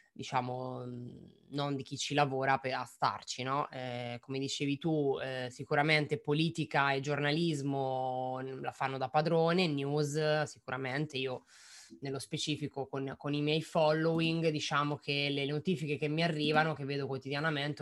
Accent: native